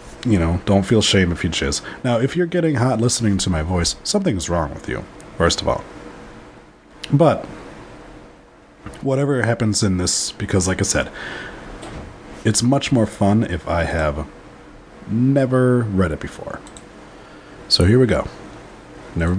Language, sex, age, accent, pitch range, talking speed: English, male, 30-49, American, 75-110 Hz, 150 wpm